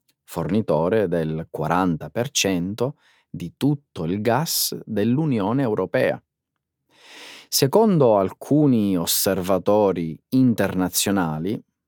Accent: native